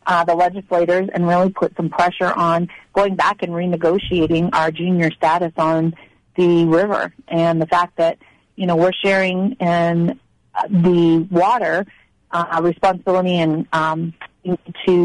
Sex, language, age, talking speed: female, English, 40-59, 140 wpm